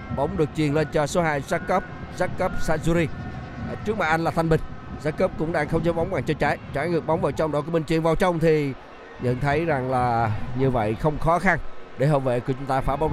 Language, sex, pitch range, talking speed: Vietnamese, male, 135-175 Hz, 245 wpm